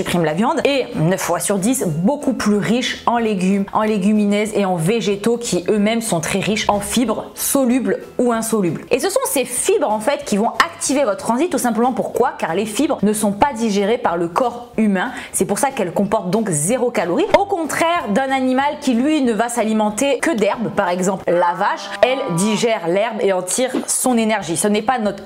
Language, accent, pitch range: French, French, 190-245 Hz